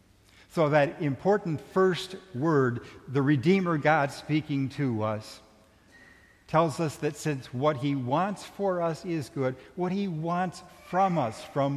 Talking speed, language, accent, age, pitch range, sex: 145 wpm, English, American, 60-79, 100-145 Hz, male